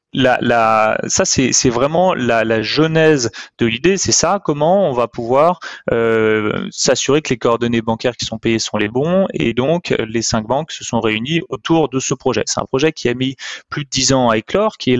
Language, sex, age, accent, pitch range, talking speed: French, male, 30-49, French, 115-150 Hz, 220 wpm